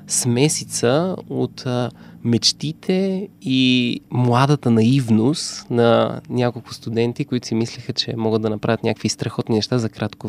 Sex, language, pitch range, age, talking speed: male, Bulgarian, 115-145 Hz, 20-39, 130 wpm